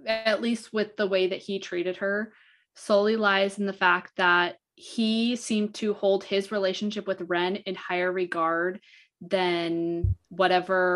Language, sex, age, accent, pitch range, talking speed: English, female, 20-39, American, 180-225 Hz, 155 wpm